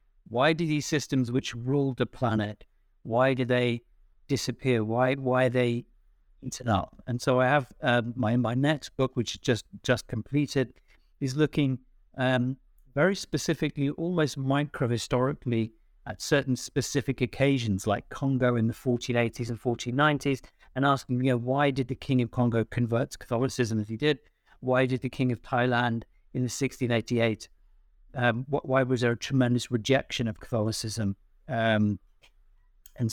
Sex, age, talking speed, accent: male, 50-69, 155 wpm, British